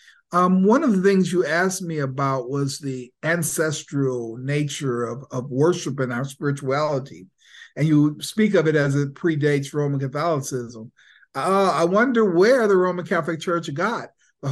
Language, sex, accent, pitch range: English, male, American, 135-175 Hz